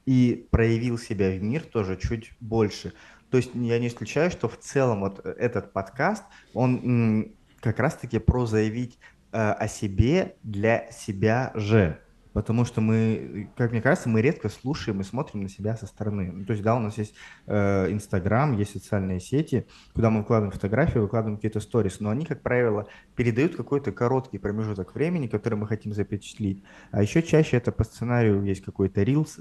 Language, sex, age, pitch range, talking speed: Russian, male, 20-39, 105-125 Hz, 175 wpm